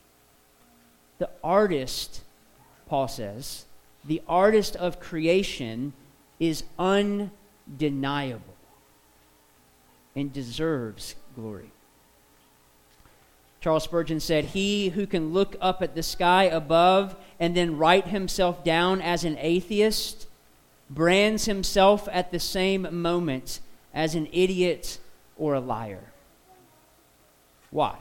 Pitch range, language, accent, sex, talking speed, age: 135-200 Hz, English, American, male, 100 wpm, 40-59